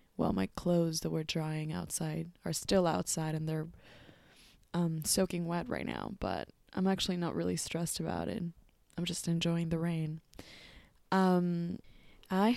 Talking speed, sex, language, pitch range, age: 155 wpm, female, English, 165-190 Hz, 20-39